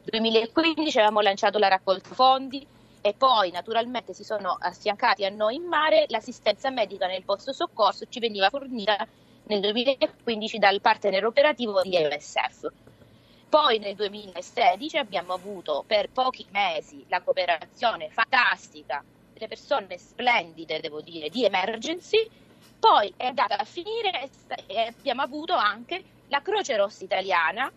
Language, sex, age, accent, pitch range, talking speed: Italian, female, 30-49, native, 190-270 Hz, 135 wpm